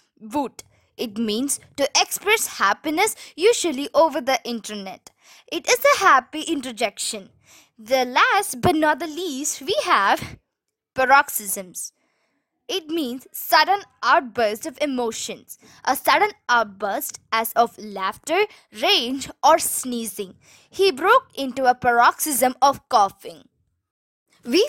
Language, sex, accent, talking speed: Tamil, female, native, 115 wpm